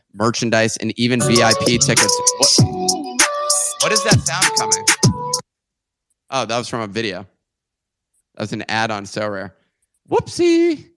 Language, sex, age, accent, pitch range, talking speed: English, male, 30-49, American, 105-135 Hz, 135 wpm